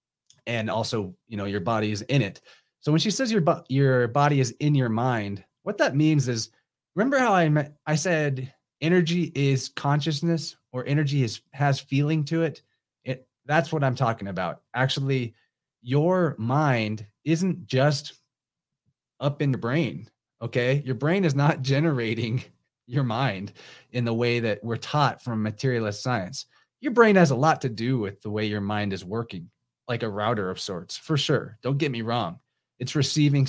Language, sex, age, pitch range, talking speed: English, male, 30-49, 115-150 Hz, 175 wpm